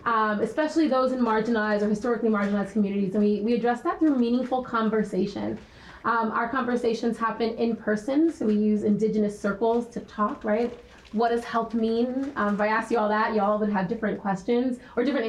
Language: English